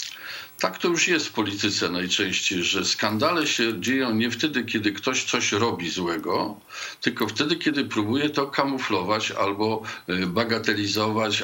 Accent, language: Polish, English